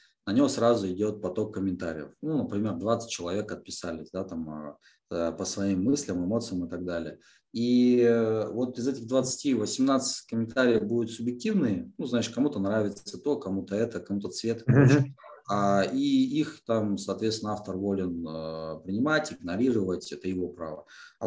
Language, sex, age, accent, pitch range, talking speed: Russian, male, 20-39, native, 90-115 Hz, 145 wpm